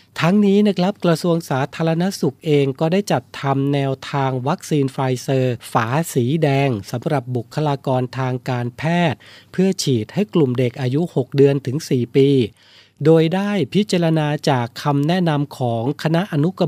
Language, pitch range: Thai, 130-165 Hz